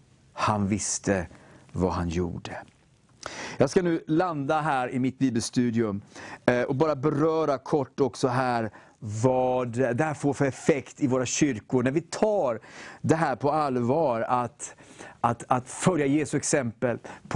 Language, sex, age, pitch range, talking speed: English, male, 40-59, 125-160 Hz, 140 wpm